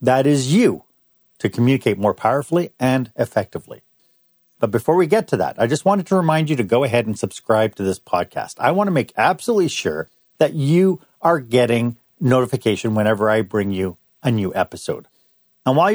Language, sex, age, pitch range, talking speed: English, male, 50-69, 110-155 Hz, 185 wpm